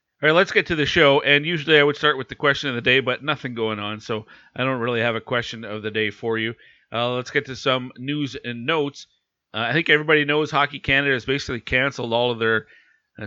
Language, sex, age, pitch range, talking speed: English, male, 40-59, 110-135 Hz, 255 wpm